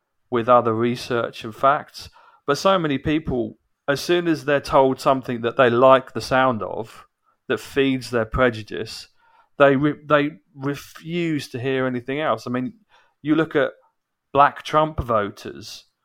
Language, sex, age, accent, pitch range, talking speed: English, male, 40-59, British, 120-150 Hz, 155 wpm